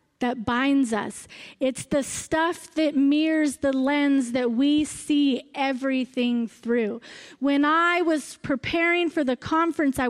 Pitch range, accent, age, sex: 240-300 Hz, American, 30-49, female